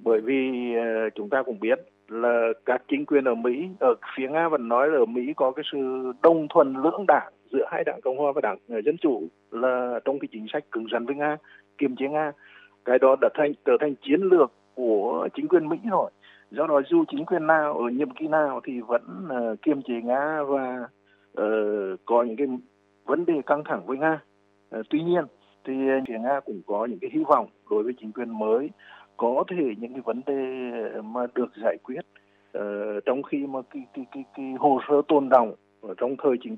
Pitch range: 120-155 Hz